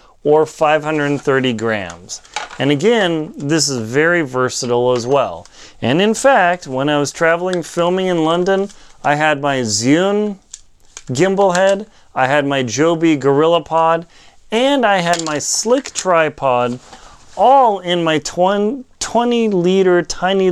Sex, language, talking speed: male, English, 130 wpm